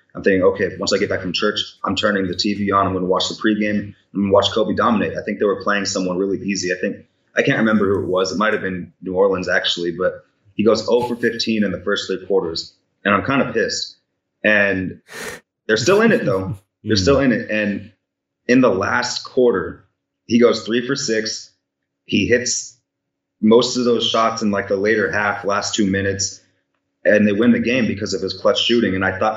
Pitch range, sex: 95-110 Hz, male